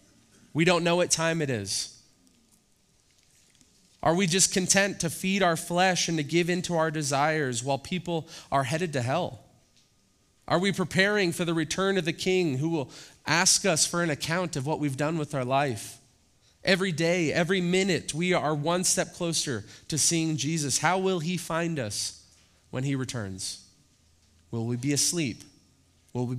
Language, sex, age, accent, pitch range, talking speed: English, male, 30-49, American, 125-170 Hz, 175 wpm